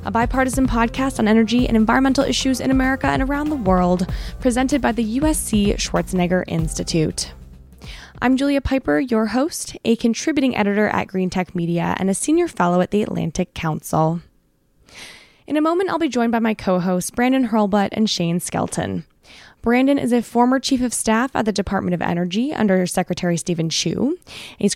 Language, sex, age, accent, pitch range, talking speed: English, female, 20-39, American, 180-260 Hz, 170 wpm